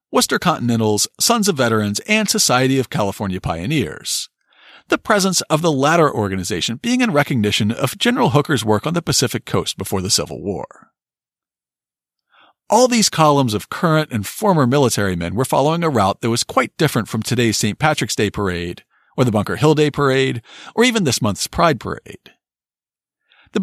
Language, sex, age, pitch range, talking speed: English, male, 40-59, 110-170 Hz, 170 wpm